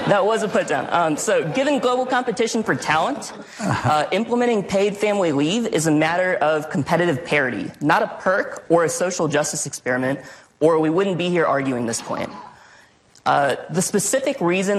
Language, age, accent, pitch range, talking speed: English, 20-39, American, 150-210 Hz, 175 wpm